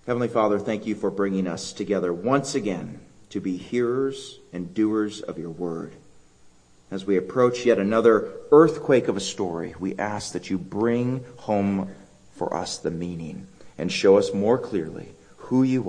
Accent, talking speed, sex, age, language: American, 165 wpm, male, 40-59, English